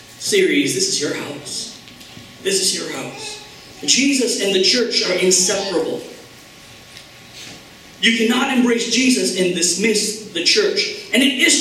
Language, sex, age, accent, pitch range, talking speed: English, male, 40-59, American, 195-270 Hz, 135 wpm